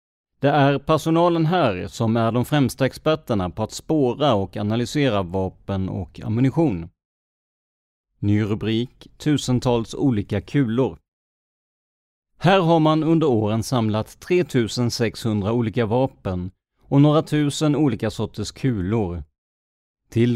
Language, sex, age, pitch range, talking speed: Swedish, male, 30-49, 105-140 Hz, 110 wpm